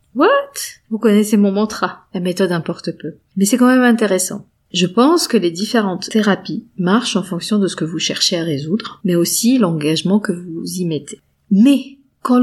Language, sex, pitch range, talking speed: French, female, 175-220 Hz, 190 wpm